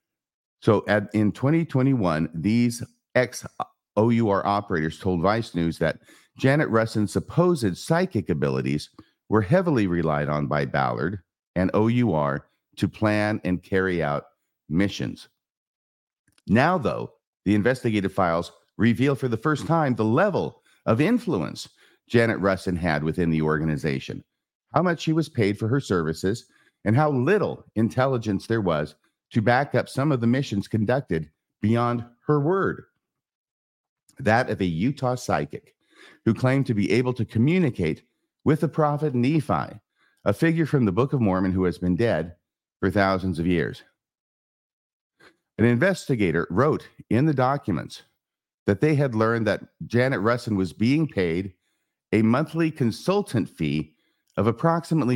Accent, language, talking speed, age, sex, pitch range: American, English, 140 wpm, 50-69, male, 90-135 Hz